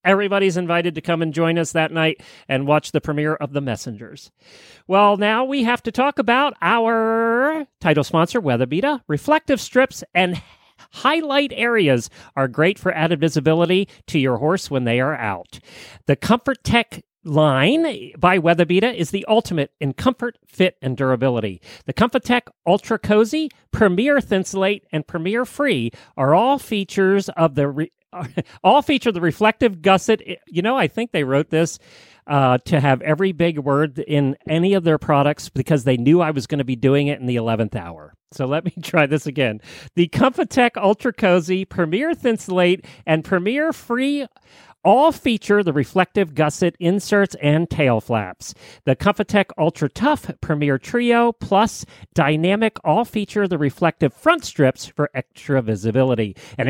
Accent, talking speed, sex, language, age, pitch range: American, 165 wpm, male, English, 40-59, 150-220 Hz